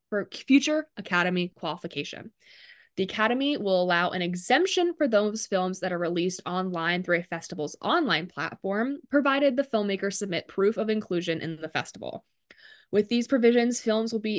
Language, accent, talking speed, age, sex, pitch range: English, American, 160 wpm, 20-39, female, 175-245 Hz